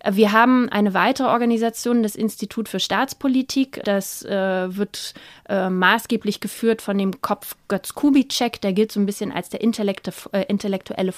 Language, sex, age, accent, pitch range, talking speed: German, female, 20-39, German, 195-230 Hz, 145 wpm